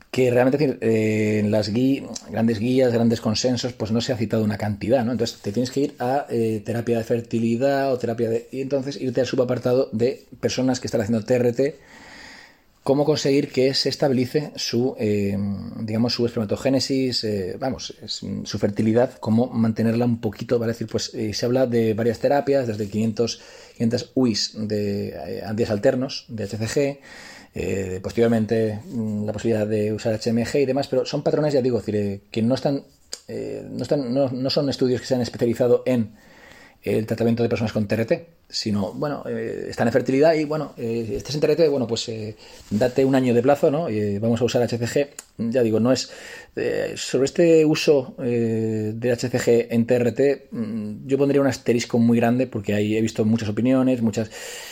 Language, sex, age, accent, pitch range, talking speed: Spanish, male, 30-49, Spanish, 110-135 Hz, 185 wpm